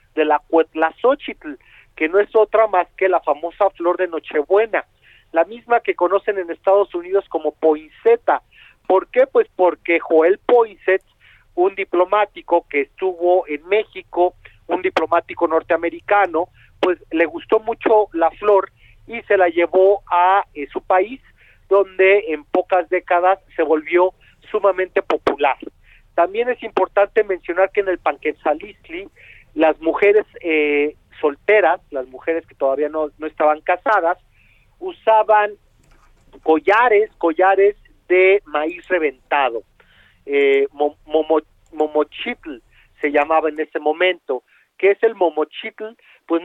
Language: Spanish